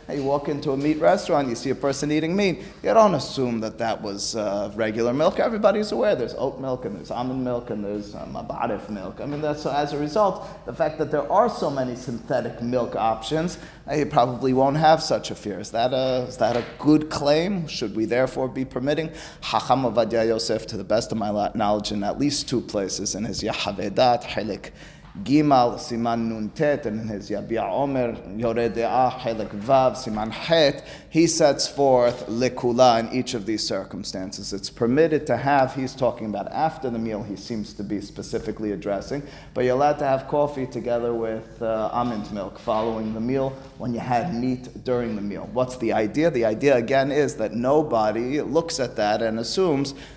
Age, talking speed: 30-49, 190 wpm